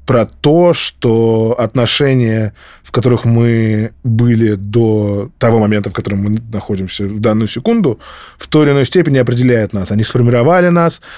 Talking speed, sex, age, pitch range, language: 150 wpm, male, 20-39, 110-125 Hz, Russian